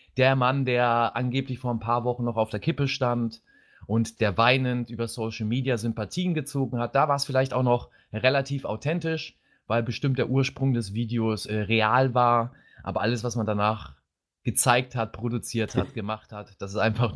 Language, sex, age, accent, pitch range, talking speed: German, male, 30-49, German, 115-140 Hz, 185 wpm